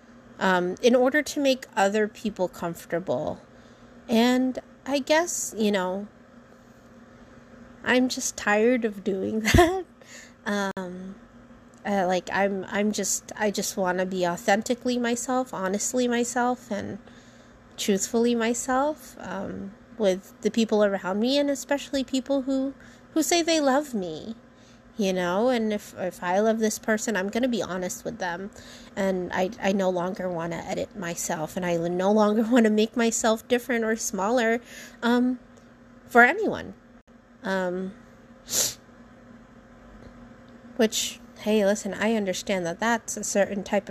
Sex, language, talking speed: female, English, 140 wpm